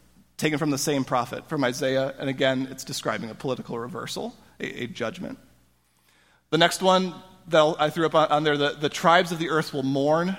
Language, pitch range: English, 140-170 Hz